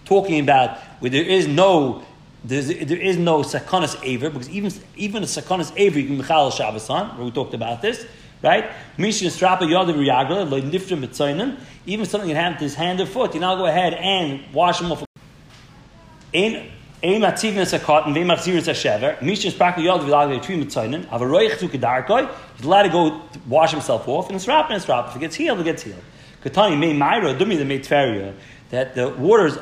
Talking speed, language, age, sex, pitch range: 135 wpm, English, 30-49, male, 140-185 Hz